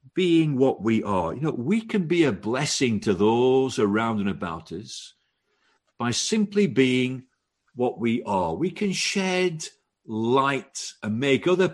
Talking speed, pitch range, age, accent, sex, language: 155 wpm, 110-175 Hz, 50-69, British, male, English